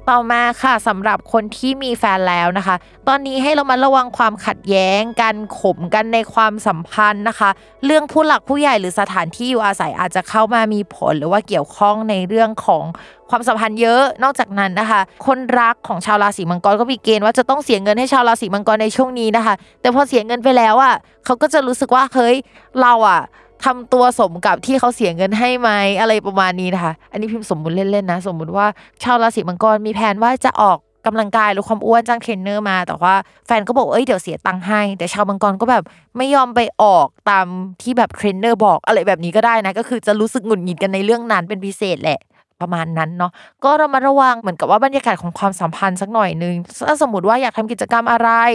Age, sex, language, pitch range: 20-39, female, Thai, 190-245 Hz